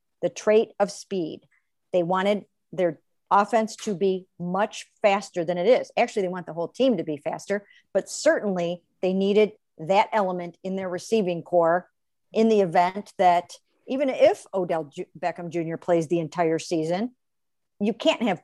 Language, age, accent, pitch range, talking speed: English, 50-69, American, 175-215 Hz, 165 wpm